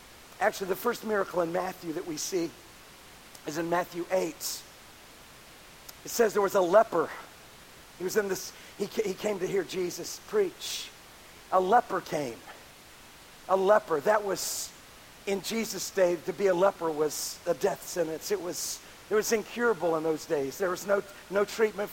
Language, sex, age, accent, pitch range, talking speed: English, male, 50-69, American, 180-225 Hz, 165 wpm